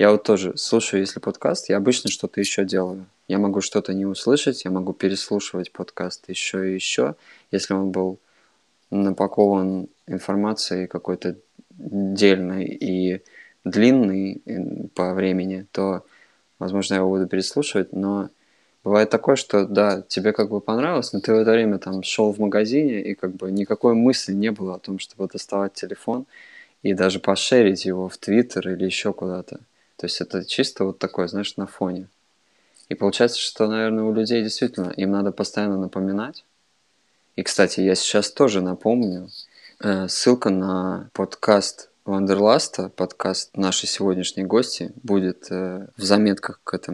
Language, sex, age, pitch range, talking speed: Russian, male, 20-39, 95-105 Hz, 150 wpm